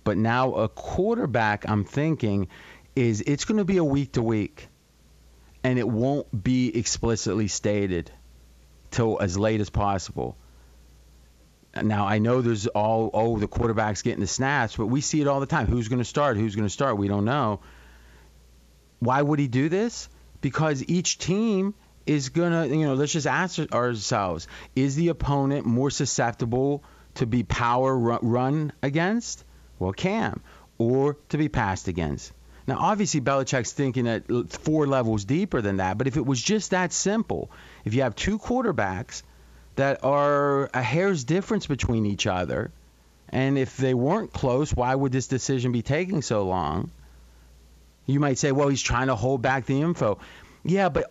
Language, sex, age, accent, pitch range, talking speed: English, male, 30-49, American, 105-145 Hz, 170 wpm